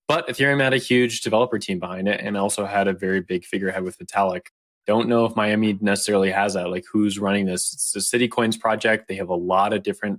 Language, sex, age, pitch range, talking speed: English, male, 20-39, 95-115 Hz, 230 wpm